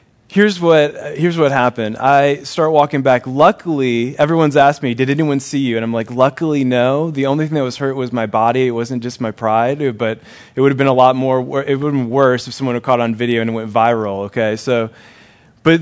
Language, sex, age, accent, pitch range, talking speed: English, male, 20-39, American, 120-150 Hz, 235 wpm